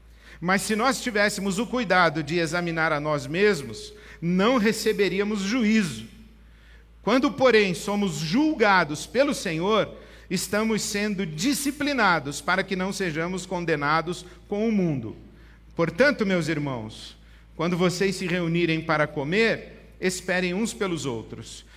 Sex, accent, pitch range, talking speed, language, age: male, Brazilian, 150-190 Hz, 120 wpm, Portuguese, 50-69